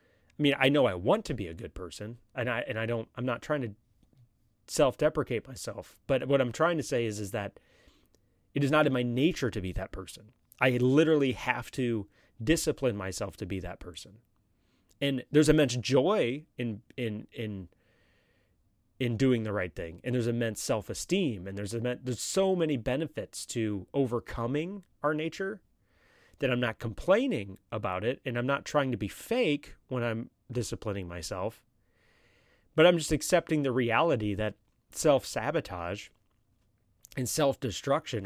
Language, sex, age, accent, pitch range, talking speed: English, male, 30-49, American, 105-135 Hz, 165 wpm